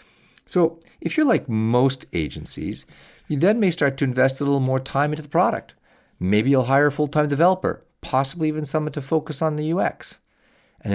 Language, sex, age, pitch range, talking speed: English, male, 50-69, 90-135 Hz, 185 wpm